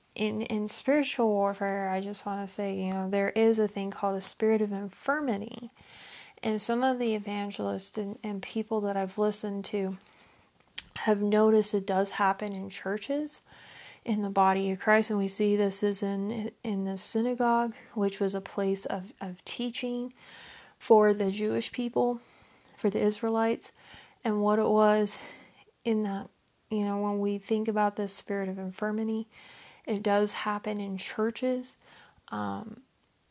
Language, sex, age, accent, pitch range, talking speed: English, female, 30-49, American, 200-220 Hz, 160 wpm